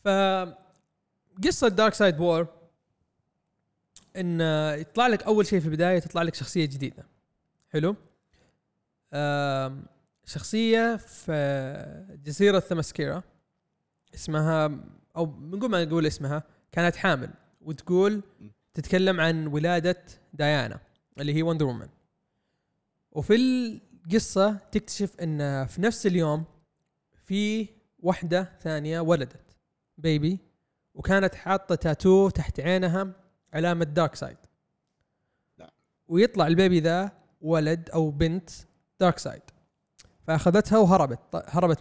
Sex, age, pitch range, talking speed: male, 20-39, 155-190 Hz, 100 wpm